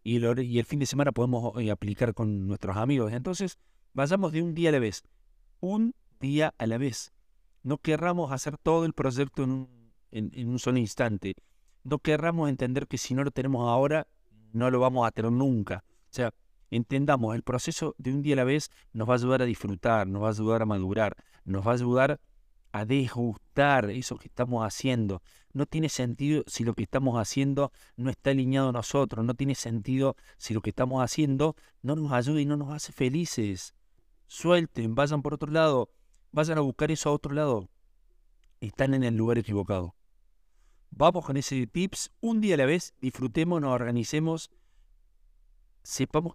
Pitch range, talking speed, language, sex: 115-145 Hz, 185 wpm, Spanish, male